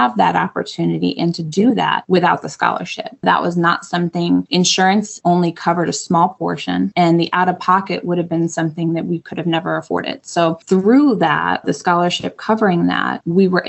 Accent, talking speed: American, 195 wpm